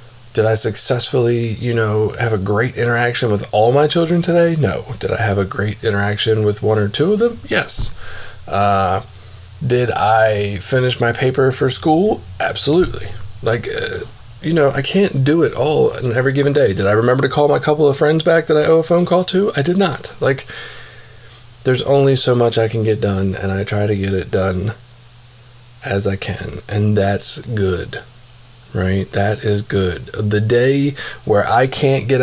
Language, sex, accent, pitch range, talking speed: English, male, American, 105-135 Hz, 190 wpm